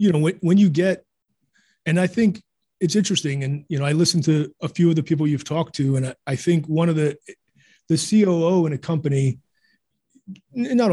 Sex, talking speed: male, 210 wpm